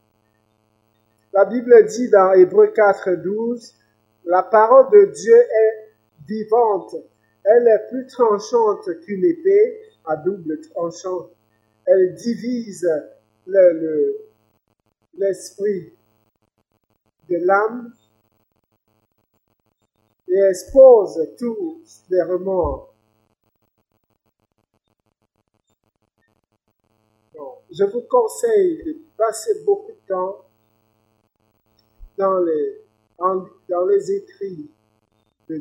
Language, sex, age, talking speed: English, male, 50-69, 80 wpm